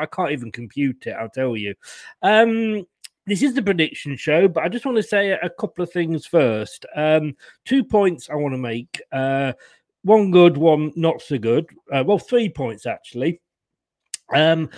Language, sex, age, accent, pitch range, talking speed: English, male, 40-59, British, 145-190 Hz, 185 wpm